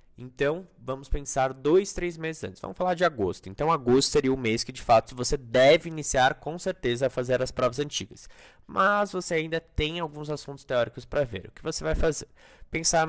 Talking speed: 200 wpm